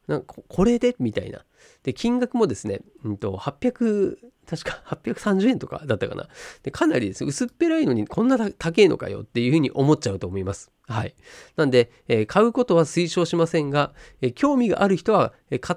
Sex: male